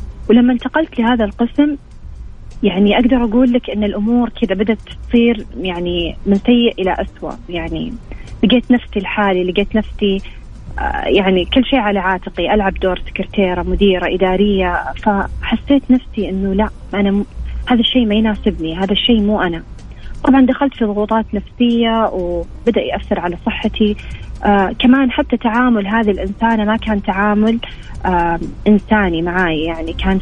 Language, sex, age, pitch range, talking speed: Arabic, female, 30-49, 190-235 Hz, 140 wpm